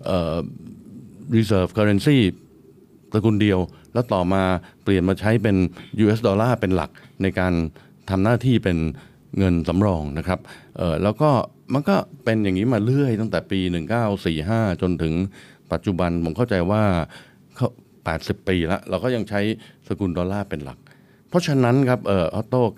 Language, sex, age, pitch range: Thai, male, 60-79, 90-115 Hz